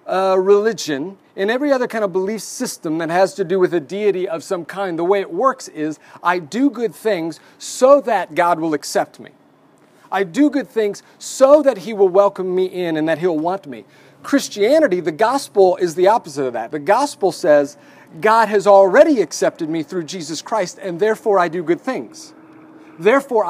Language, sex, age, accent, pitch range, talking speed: English, male, 40-59, American, 165-220 Hz, 195 wpm